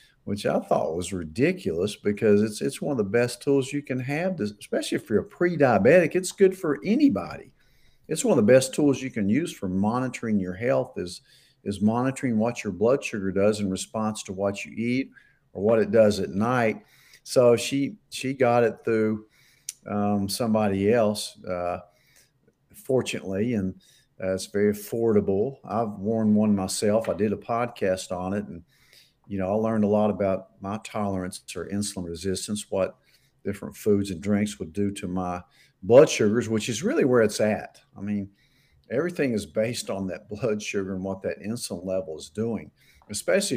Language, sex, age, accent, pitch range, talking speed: English, male, 50-69, American, 95-125 Hz, 180 wpm